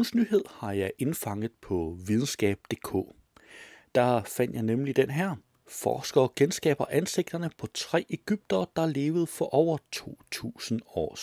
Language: Danish